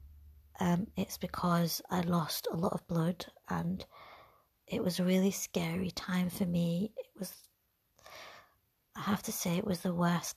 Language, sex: English, female